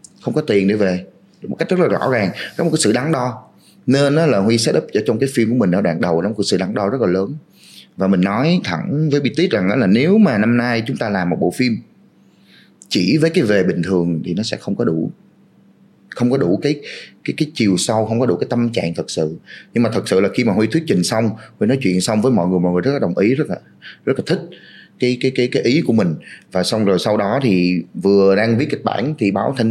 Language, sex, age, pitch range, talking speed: Vietnamese, male, 30-49, 90-125 Hz, 275 wpm